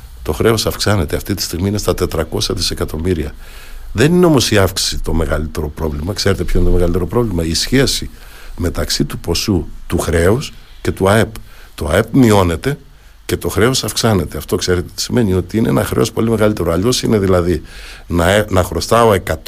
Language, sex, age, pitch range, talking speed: Greek, male, 60-79, 85-110 Hz, 175 wpm